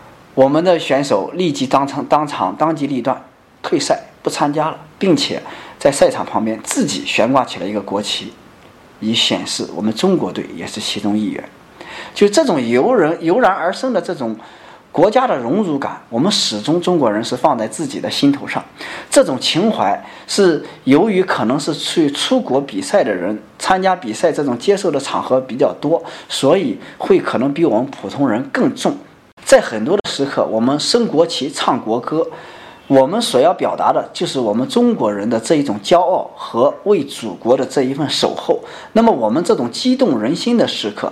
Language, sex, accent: Chinese, male, native